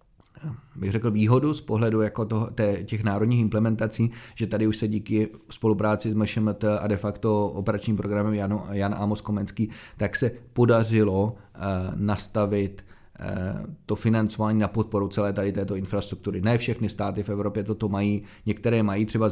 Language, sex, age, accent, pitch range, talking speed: Czech, male, 30-49, native, 100-110 Hz, 160 wpm